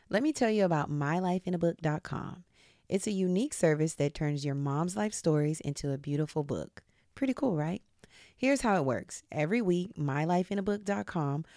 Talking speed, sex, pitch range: 155 wpm, female, 145-185 Hz